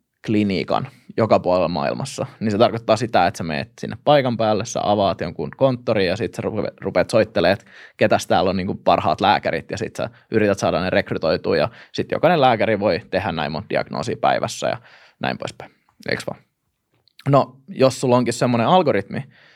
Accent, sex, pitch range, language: native, male, 105-125 Hz, Finnish